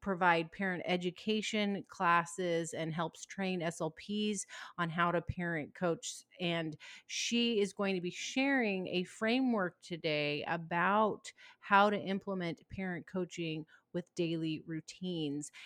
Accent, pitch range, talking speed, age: American, 170-215 Hz, 125 wpm, 30-49